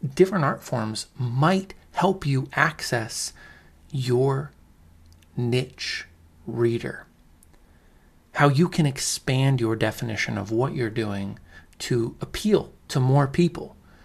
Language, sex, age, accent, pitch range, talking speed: English, male, 40-59, American, 105-140 Hz, 105 wpm